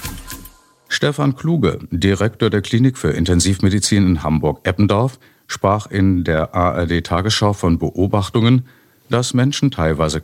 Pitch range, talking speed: 85-120 Hz, 105 wpm